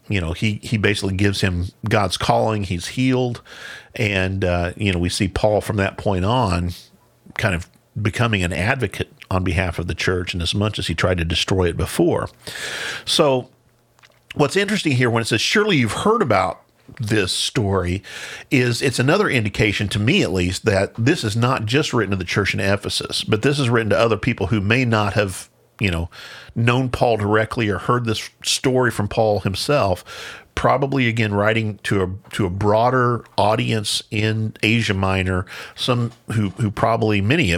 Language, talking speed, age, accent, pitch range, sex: English, 180 wpm, 50-69, American, 95-115 Hz, male